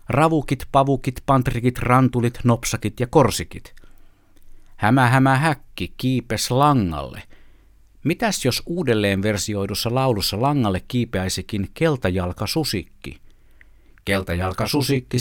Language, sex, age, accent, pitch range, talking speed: Finnish, male, 50-69, native, 95-135 Hz, 85 wpm